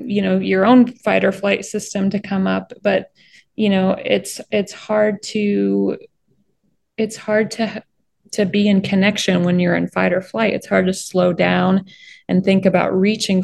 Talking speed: 180 wpm